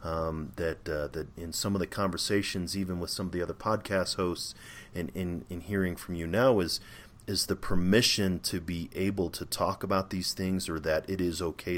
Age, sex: 30-49, male